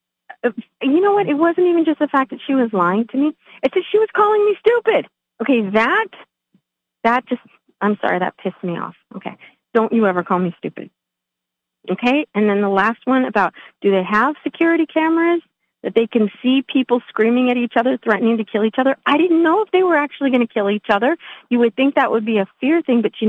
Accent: American